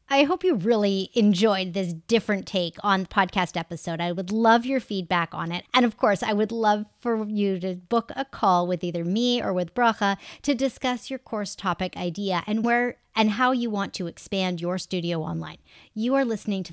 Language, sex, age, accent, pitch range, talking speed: English, female, 40-59, American, 185-235 Hz, 210 wpm